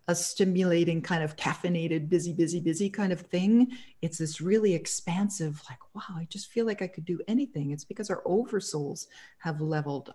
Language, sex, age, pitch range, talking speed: English, female, 50-69, 150-180 Hz, 175 wpm